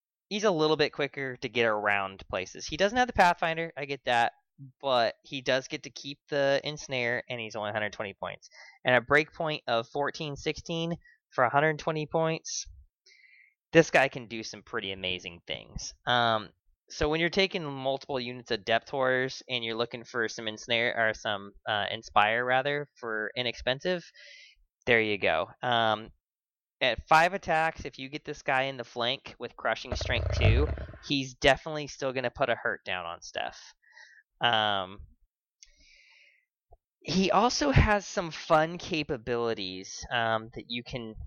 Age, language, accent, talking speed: 20-39, English, American, 160 wpm